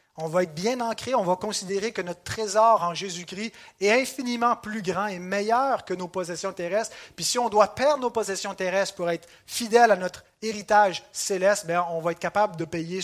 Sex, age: male, 30-49